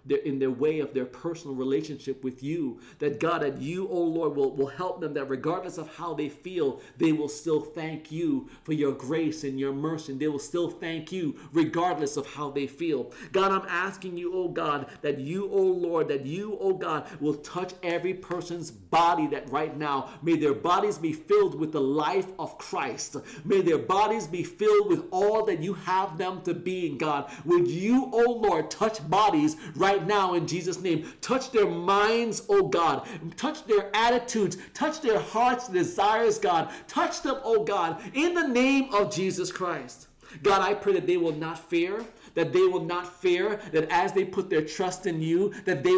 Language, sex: English, male